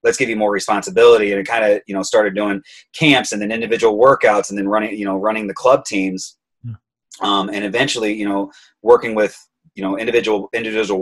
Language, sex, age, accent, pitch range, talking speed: English, male, 30-49, American, 95-120 Hz, 205 wpm